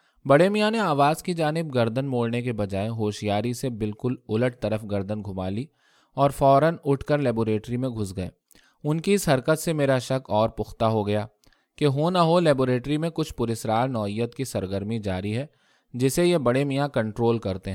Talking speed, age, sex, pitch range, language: 195 wpm, 20-39, male, 105-140 Hz, Urdu